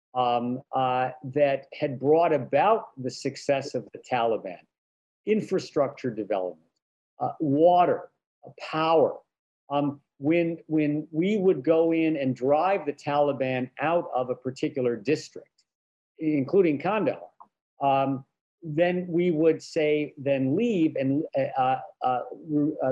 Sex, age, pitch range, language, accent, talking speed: male, 50-69, 135-165 Hz, English, American, 120 wpm